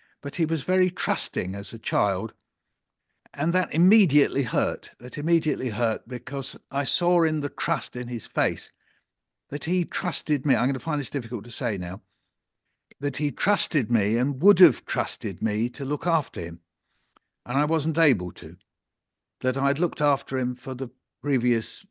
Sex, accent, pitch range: male, British, 115-155 Hz